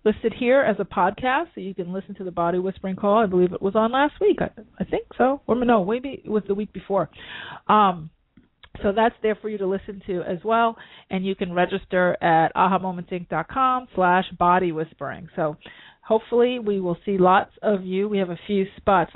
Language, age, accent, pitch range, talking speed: English, 40-59, American, 175-215 Hz, 205 wpm